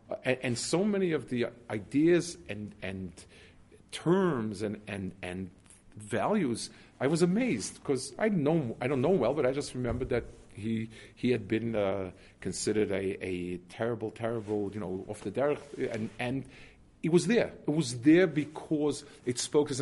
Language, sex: English, male